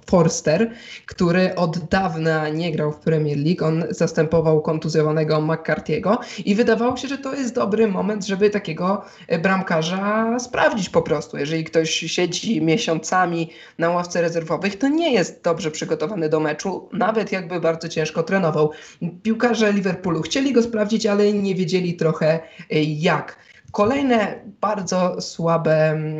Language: Polish